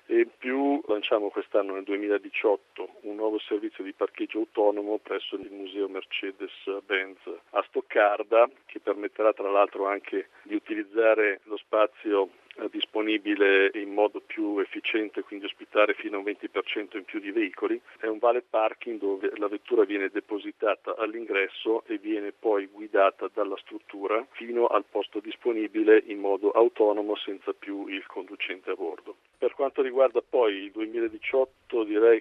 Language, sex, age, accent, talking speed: Italian, male, 50-69, native, 145 wpm